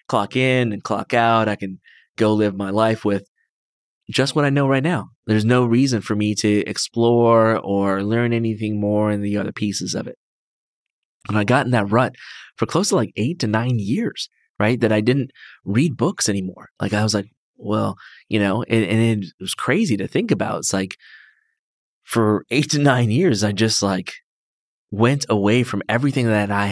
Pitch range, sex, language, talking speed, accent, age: 100-120 Hz, male, English, 195 wpm, American, 20-39